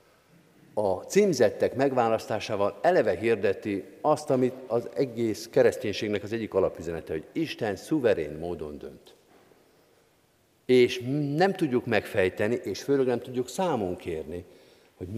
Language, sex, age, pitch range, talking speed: Hungarian, male, 50-69, 115-150 Hz, 115 wpm